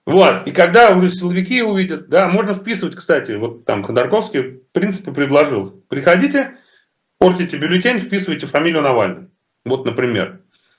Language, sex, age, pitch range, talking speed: Russian, male, 30-49, 130-180 Hz, 135 wpm